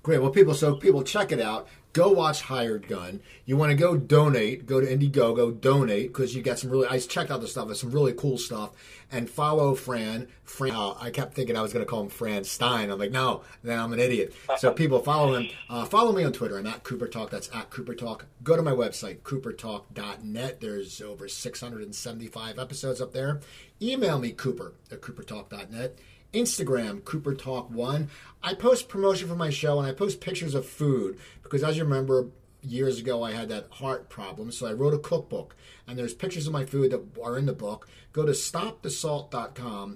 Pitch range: 120-150 Hz